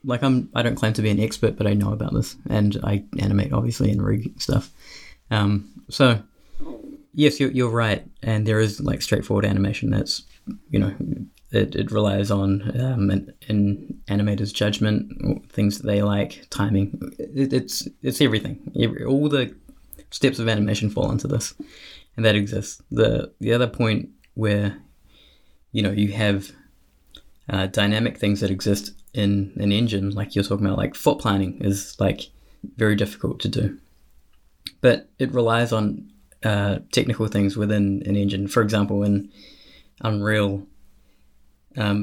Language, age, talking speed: English, 20-39, 160 wpm